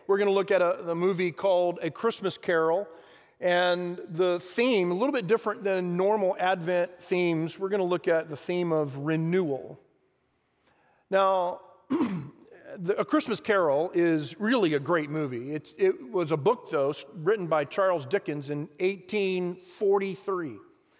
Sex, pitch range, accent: male, 160-195 Hz, American